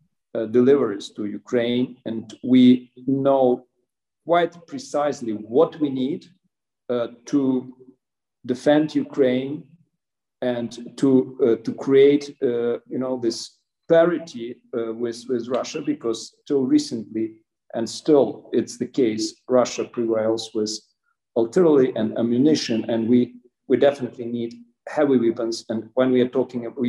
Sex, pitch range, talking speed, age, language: male, 115-140 Hz, 125 wpm, 50-69, English